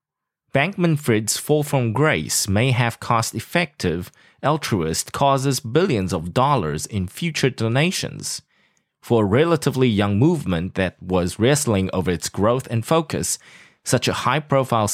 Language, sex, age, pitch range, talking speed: English, male, 20-39, 100-140 Hz, 125 wpm